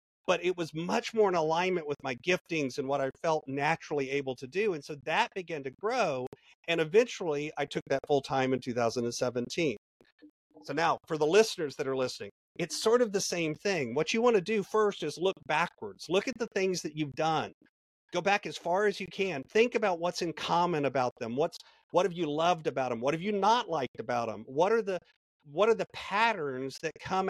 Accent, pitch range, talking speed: American, 140-190 Hz, 220 wpm